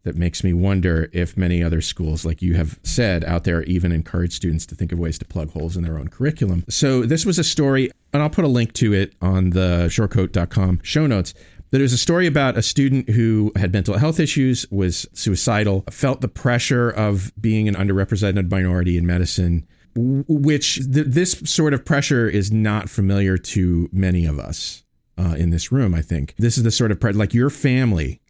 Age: 40-59